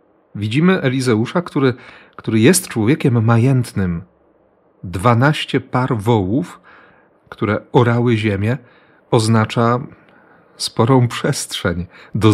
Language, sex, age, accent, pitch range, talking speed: Polish, male, 40-59, native, 105-135 Hz, 85 wpm